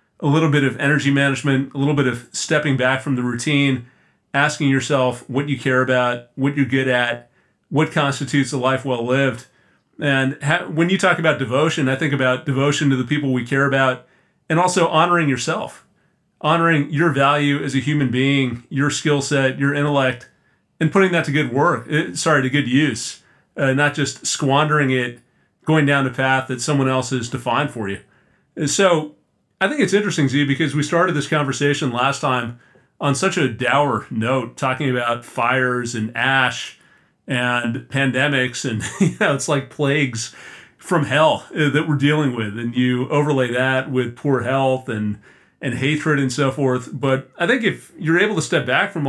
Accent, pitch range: American, 130-150 Hz